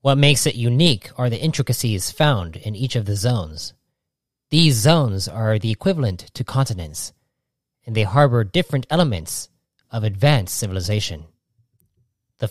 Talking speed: 140 wpm